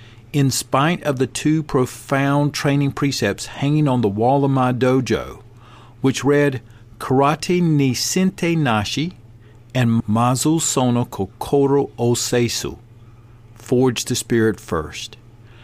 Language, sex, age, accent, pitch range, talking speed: English, male, 50-69, American, 115-140 Hz, 110 wpm